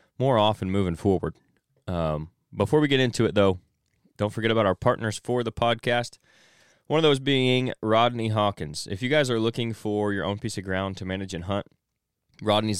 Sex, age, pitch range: male, 20-39, 95-115 Hz